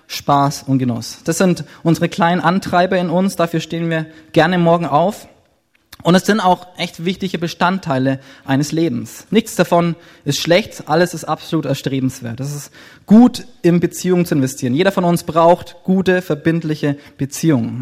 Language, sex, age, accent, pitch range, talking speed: German, male, 20-39, German, 140-175 Hz, 160 wpm